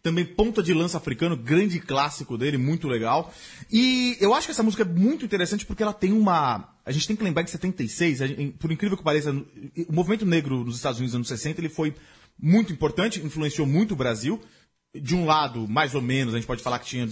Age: 30-49